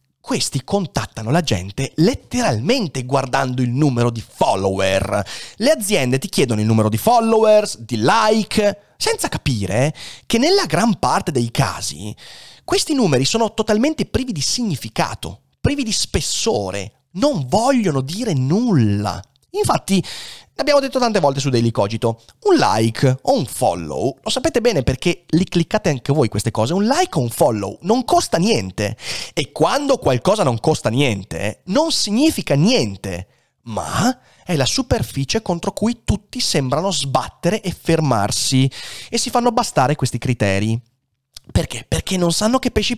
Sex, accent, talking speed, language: male, native, 150 wpm, Italian